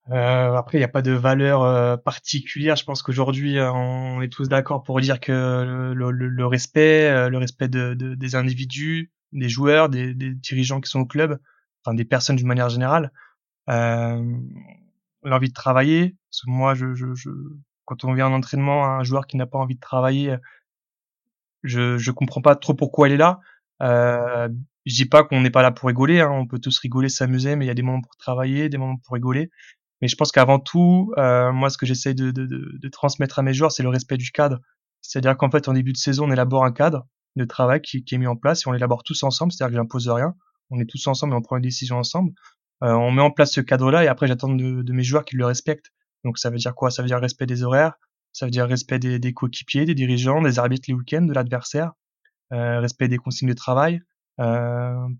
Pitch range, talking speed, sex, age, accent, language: 125-145 Hz, 240 wpm, male, 20-39, French, French